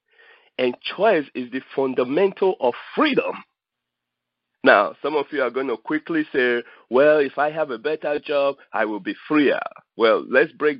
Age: 50-69